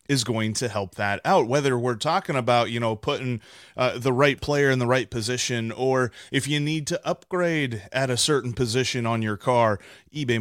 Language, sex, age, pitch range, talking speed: English, male, 30-49, 115-155 Hz, 200 wpm